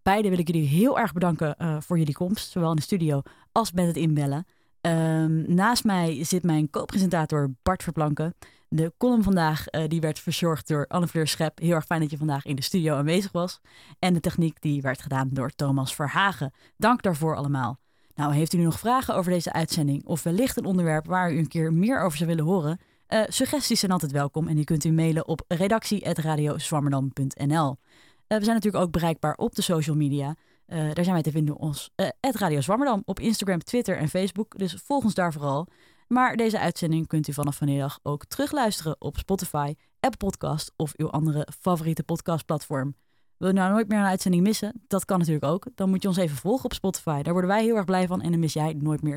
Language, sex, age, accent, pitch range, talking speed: Dutch, female, 20-39, Dutch, 155-195 Hz, 210 wpm